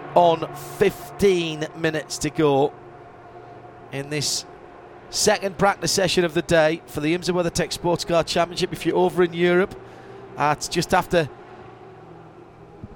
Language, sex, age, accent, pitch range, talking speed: English, male, 40-59, British, 150-175 Hz, 140 wpm